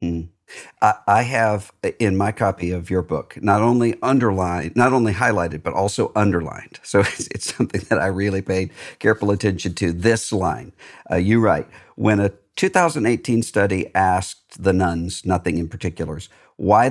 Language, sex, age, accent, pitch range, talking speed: English, male, 50-69, American, 85-110 Hz, 160 wpm